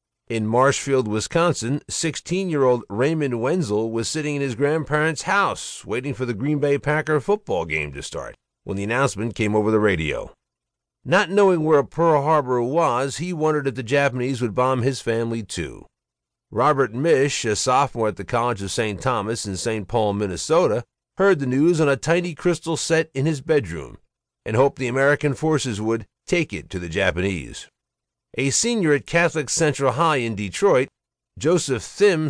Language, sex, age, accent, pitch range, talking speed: English, male, 50-69, American, 115-160 Hz, 170 wpm